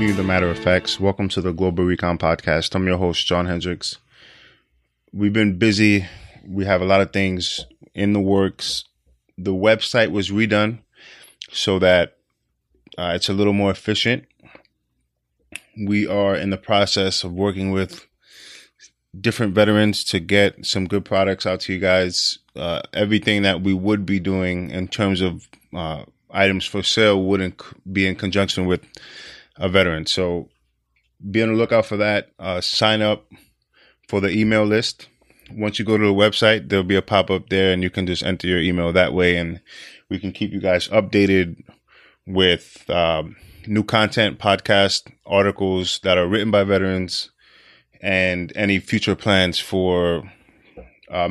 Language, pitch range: English, 90-105 Hz